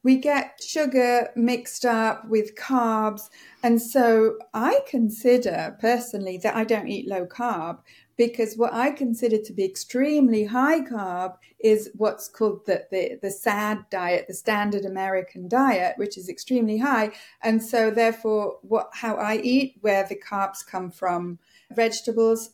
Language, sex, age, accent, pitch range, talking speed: English, female, 40-59, British, 195-240 Hz, 150 wpm